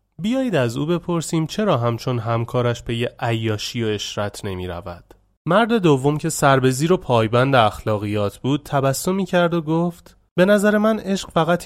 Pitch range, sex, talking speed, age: 120-165 Hz, male, 165 wpm, 30-49